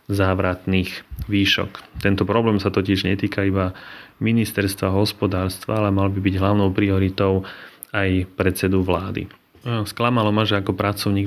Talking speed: 130 wpm